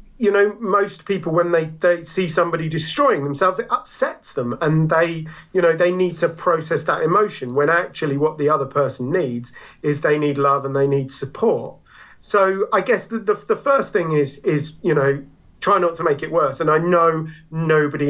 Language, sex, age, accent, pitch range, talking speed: English, male, 40-59, British, 140-180 Hz, 200 wpm